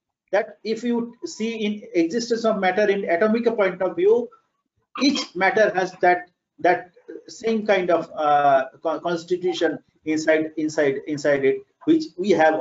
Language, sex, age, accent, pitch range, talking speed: English, male, 50-69, Indian, 175-245 Hz, 145 wpm